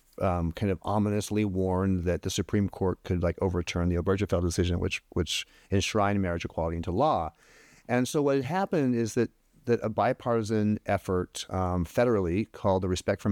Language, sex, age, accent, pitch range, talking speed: English, male, 40-59, American, 95-115 Hz, 175 wpm